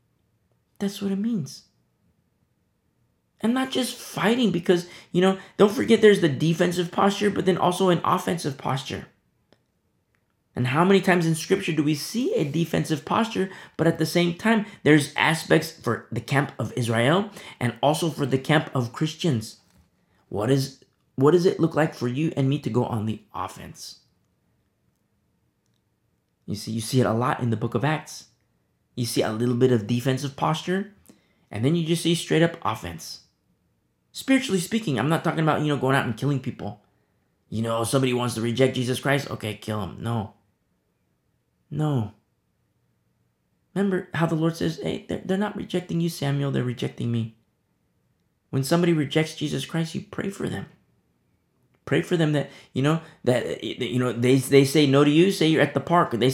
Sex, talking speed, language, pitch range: male, 180 wpm, English, 125-175 Hz